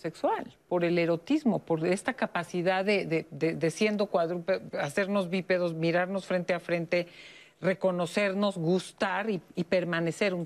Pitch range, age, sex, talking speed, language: 165-210 Hz, 40-59, female, 145 wpm, Spanish